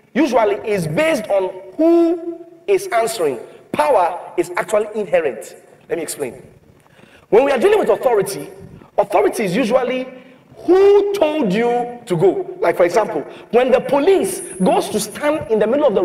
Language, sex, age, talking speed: English, male, 40-59, 155 wpm